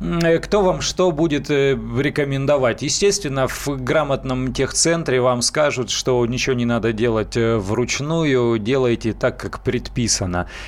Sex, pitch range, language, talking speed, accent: male, 120-145 Hz, Russian, 120 wpm, native